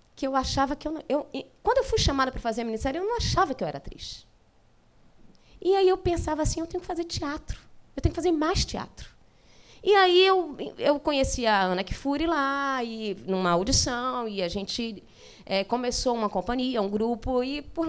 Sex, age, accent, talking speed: female, 20-39, Brazilian, 205 wpm